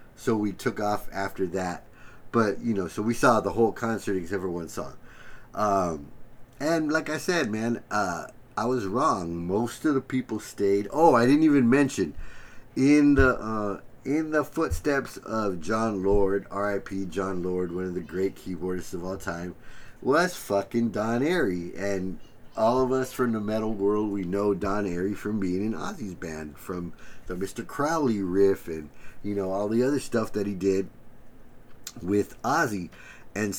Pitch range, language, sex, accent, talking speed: 100-120 Hz, English, male, American, 175 wpm